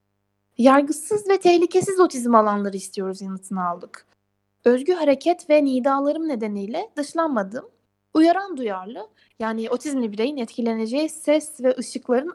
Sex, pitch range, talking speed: female, 195-300 Hz, 110 wpm